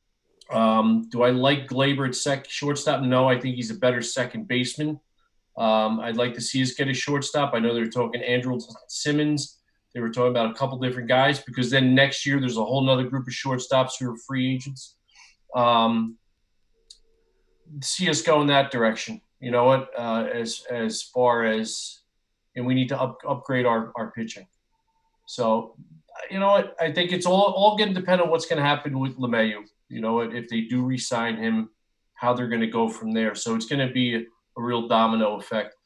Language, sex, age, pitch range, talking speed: English, male, 40-59, 115-135 Hz, 200 wpm